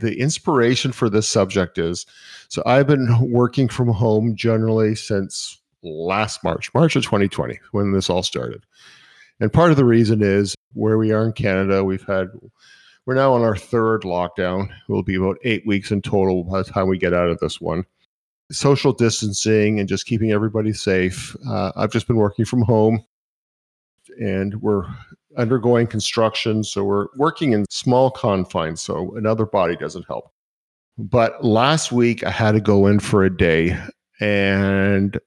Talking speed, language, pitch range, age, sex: 170 wpm, English, 95-120 Hz, 50-69, male